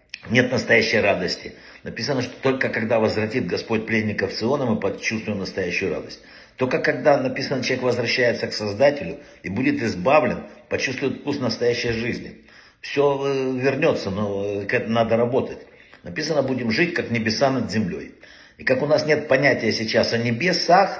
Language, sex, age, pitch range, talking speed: Russian, male, 60-79, 110-135 Hz, 150 wpm